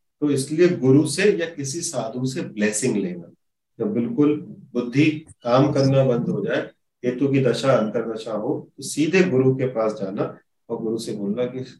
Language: Hindi